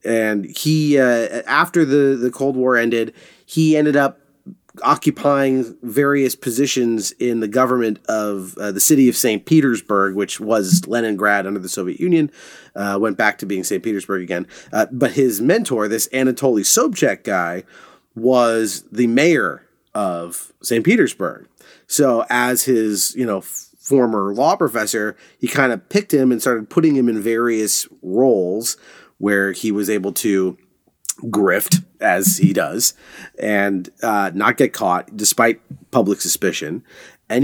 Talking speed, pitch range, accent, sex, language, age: 150 wpm, 105-140 Hz, American, male, English, 30-49